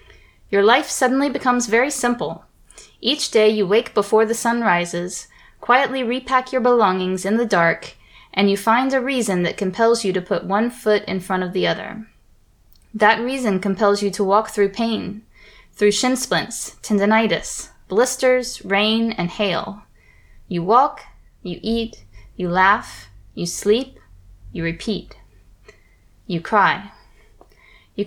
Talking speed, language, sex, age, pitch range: 145 wpm, English, female, 10-29, 190-235 Hz